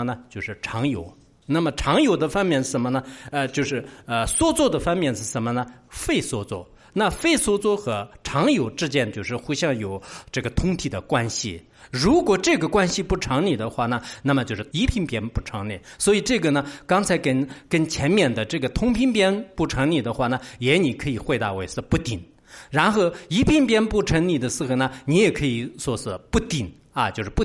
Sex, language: male, English